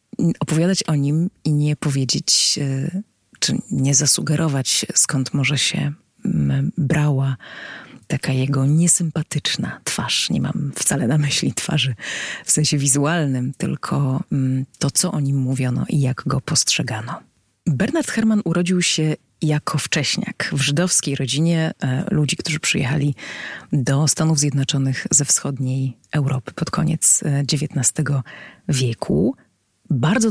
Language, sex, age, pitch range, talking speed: Polish, female, 30-49, 135-170 Hz, 115 wpm